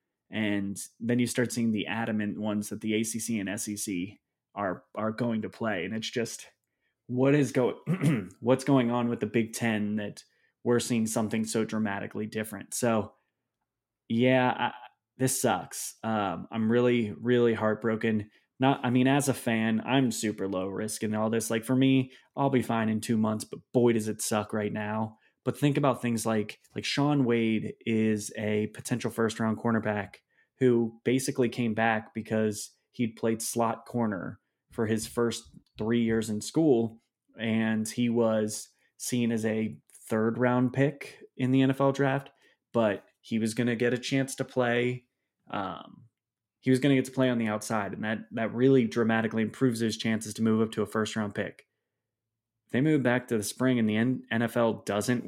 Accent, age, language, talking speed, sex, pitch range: American, 20-39, English, 180 wpm, male, 110-125 Hz